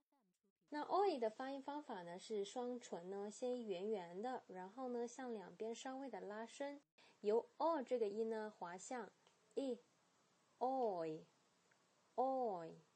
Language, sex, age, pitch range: Chinese, female, 20-39, 190-250 Hz